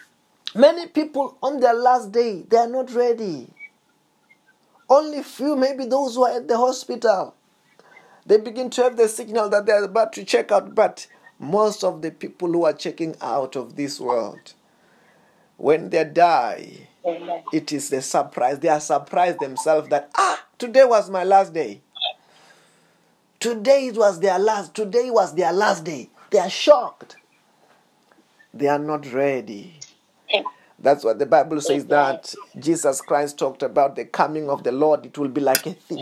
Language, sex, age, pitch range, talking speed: English, male, 30-49, 160-250 Hz, 165 wpm